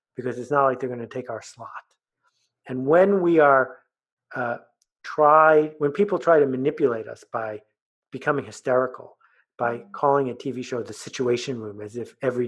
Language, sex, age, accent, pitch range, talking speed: English, male, 50-69, American, 120-145 Hz, 170 wpm